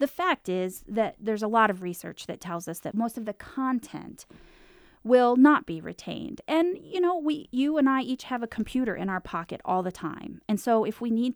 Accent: American